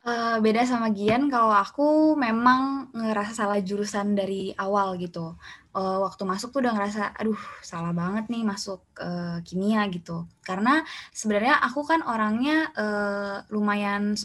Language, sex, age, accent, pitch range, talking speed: English, female, 20-39, Indonesian, 195-230 Hz, 125 wpm